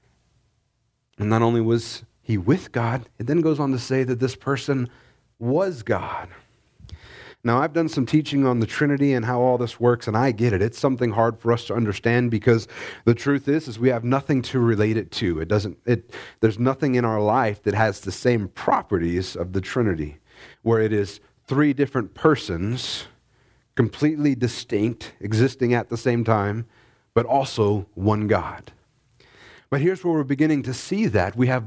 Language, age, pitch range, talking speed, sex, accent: English, 30-49, 115-145 Hz, 185 wpm, male, American